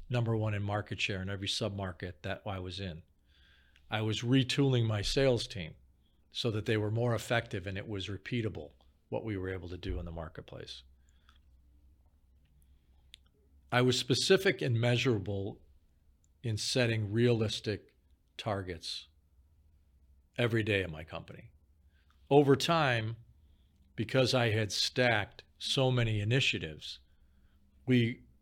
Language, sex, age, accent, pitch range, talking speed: English, male, 50-69, American, 75-120 Hz, 130 wpm